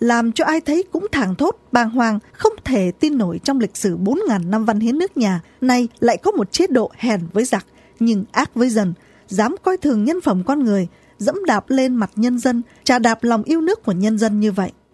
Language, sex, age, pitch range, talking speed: Vietnamese, female, 20-39, 210-310 Hz, 235 wpm